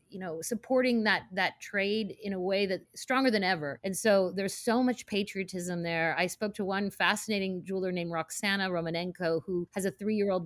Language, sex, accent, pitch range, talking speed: English, female, American, 180-215 Hz, 190 wpm